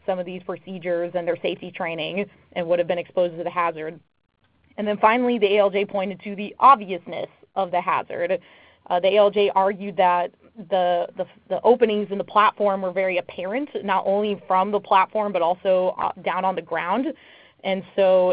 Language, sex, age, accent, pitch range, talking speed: English, female, 20-39, American, 185-210 Hz, 185 wpm